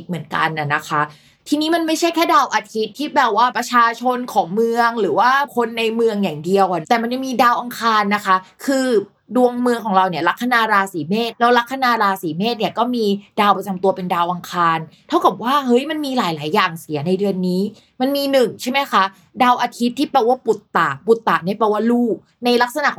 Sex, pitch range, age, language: female, 185-245 Hz, 20-39, Thai